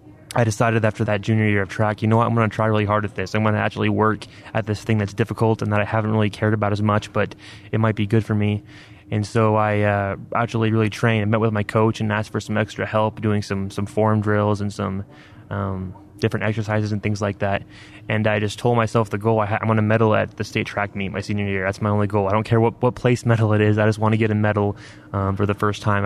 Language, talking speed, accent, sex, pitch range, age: English, 280 wpm, American, male, 105-115 Hz, 20-39